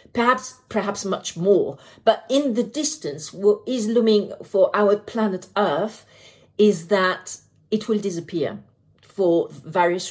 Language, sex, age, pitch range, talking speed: English, female, 40-59, 150-195 Hz, 130 wpm